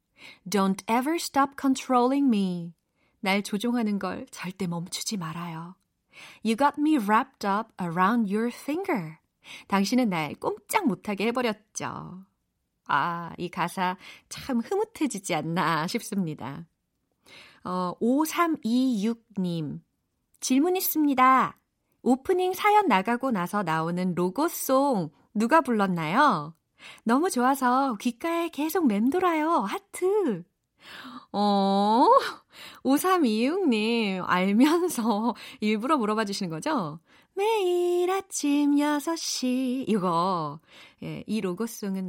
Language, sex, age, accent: Korean, female, 30-49, native